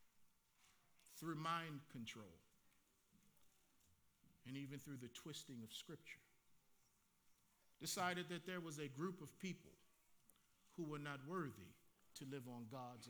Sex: male